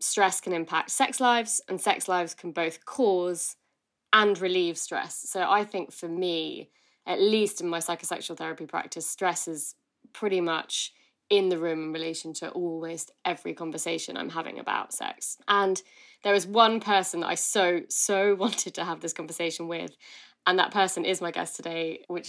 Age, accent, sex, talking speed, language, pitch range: 20-39, British, female, 180 wpm, English, 165-195 Hz